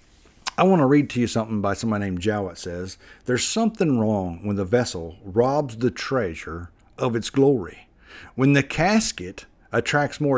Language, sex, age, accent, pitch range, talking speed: English, male, 50-69, American, 95-130 Hz, 170 wpm